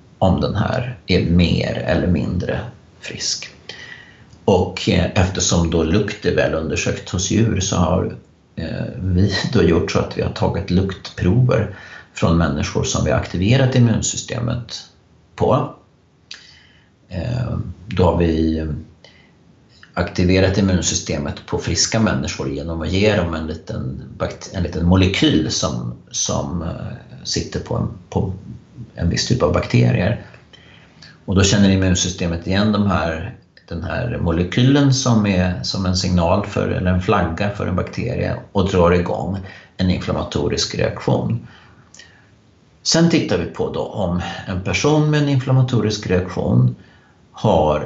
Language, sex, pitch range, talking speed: Swedish, male, 85-110 Hz, 135 wpm